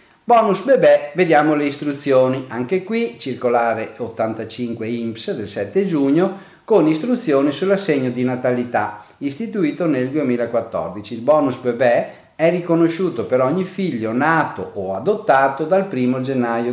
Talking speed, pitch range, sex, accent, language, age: 125 wpm, 115-160 Hz, male, native, Italian, 40-59